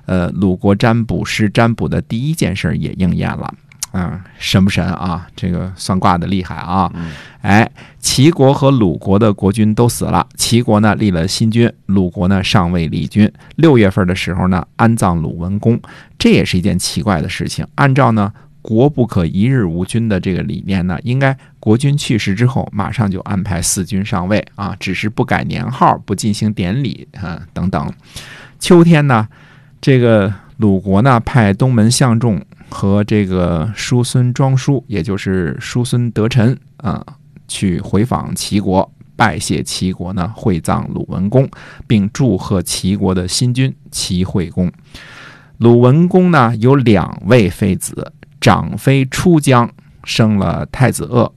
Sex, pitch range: male, 95-130 Hz